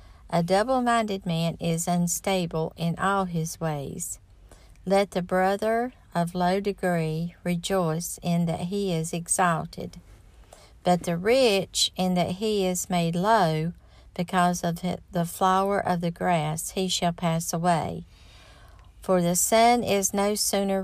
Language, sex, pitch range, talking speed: English, female, 160-195 Hz, 135 wpm